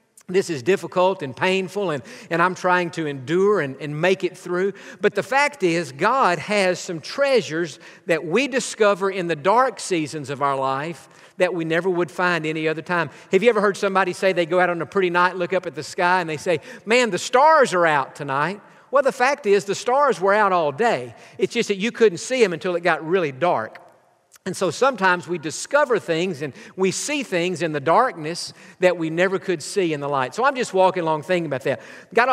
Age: 50-69